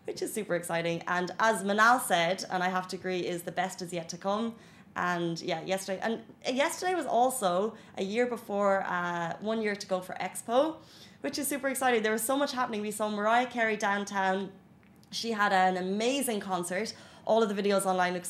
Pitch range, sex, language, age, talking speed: 180-225 Hz, female, Arabic, 20-39, 205 wpm